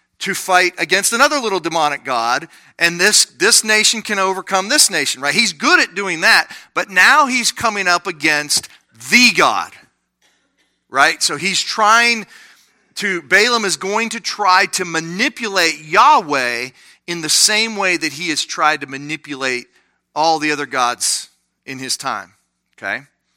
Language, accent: English, American